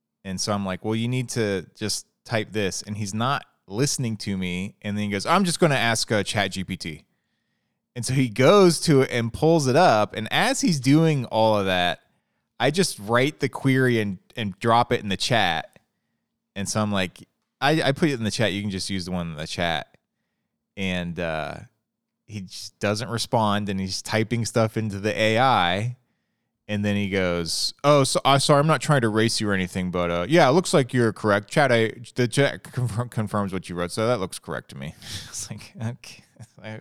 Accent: American